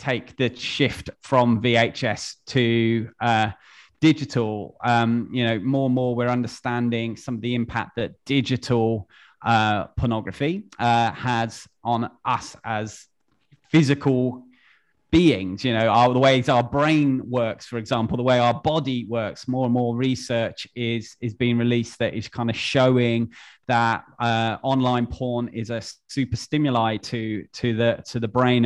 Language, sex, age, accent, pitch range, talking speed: English, male, 30-49, British, 115-130 Hz, 155 wpm